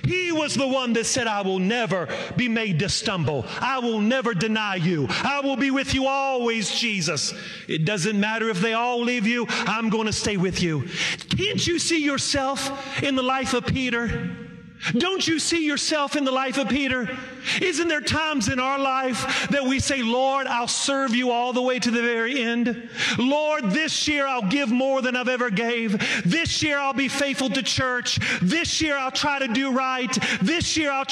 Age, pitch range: 40-59, 210-270 Hz